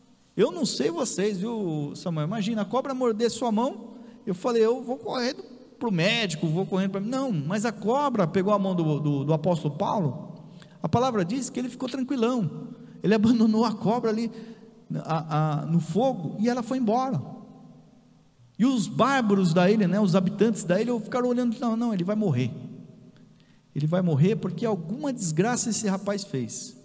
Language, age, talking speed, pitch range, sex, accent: Portuguese, 50-69, 185 wpm, 190-255 Hz, male, Brazilian